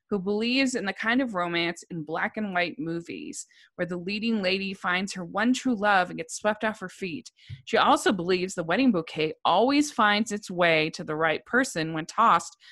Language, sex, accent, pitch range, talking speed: English, female, American, 170-220 Hz, 205 wpm